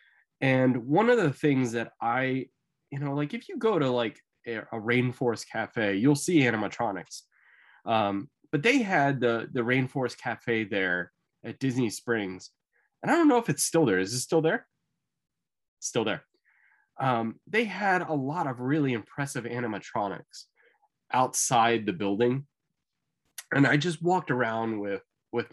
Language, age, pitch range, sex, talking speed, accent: English, 20-39, 120-160 Hz, male, 155 wpm, American